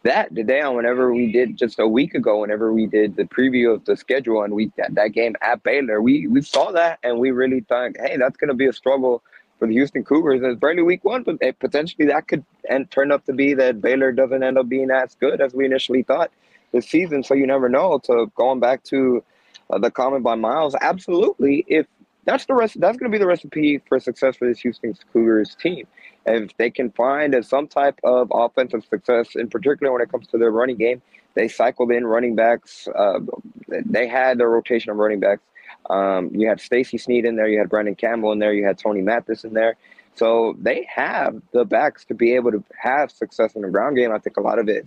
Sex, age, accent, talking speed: male, 20-39, American, 235 wpm